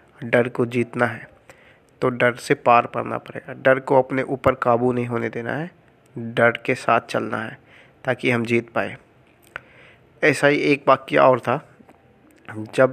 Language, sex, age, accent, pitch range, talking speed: Hindi, male, 20-39, native, 115-130 Hz, 160 wpm